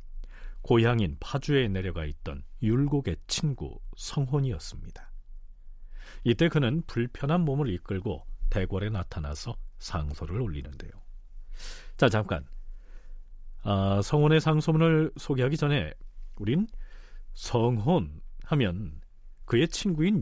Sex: male